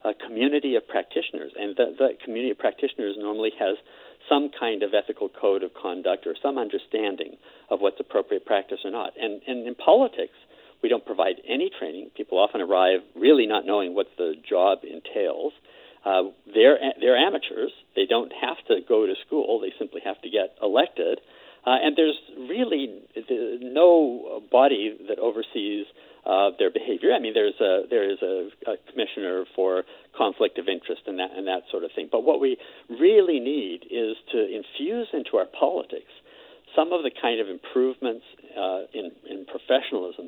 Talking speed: 175 wpm